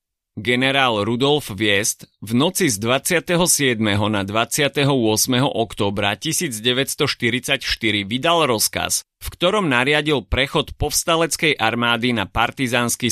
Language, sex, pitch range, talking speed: Slovak, male, 110-140 Hz, 95 wpm